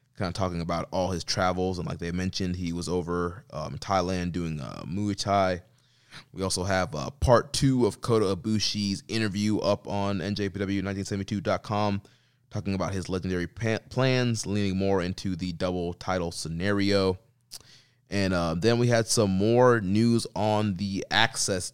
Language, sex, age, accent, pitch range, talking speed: English, male, 20-39, American, 90-115 Hz, 160 wpm